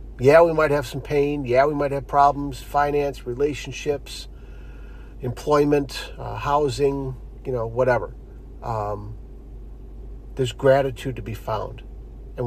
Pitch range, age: 115-145 Hz, 50-69